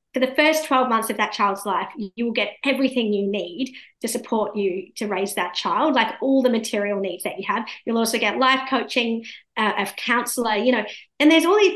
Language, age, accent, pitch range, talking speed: English, 30-49, Australian, 205-255 Hz, 225 wpm